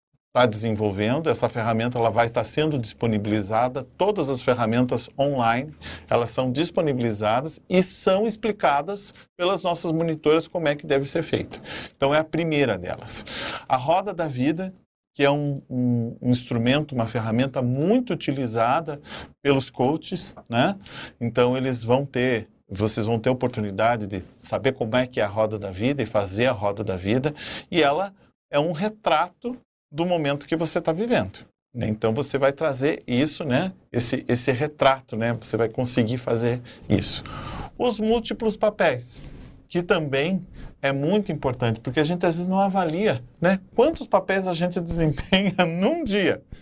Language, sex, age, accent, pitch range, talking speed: Portuguese, male, 40-59, Brazilian, 125-180 Hz, 160 wpm